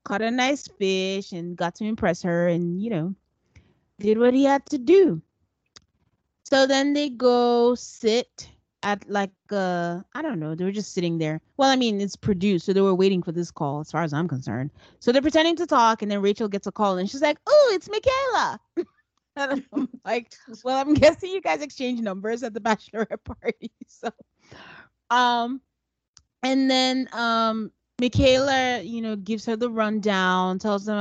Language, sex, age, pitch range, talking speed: English, female, 30-49, 190-250 Hz, 180 wpm